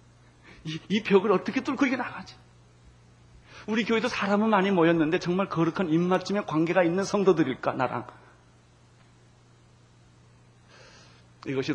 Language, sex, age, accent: Korean, male, 40-59, native